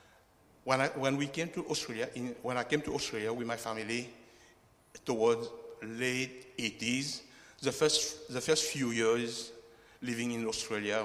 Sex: male